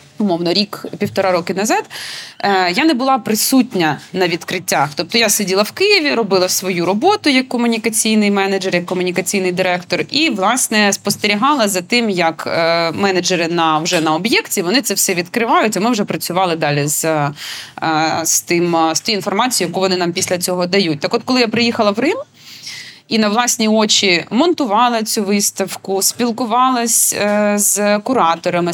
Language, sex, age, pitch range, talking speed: Ukrainian, female, 20-39, 180-230 Hz, 150 wpm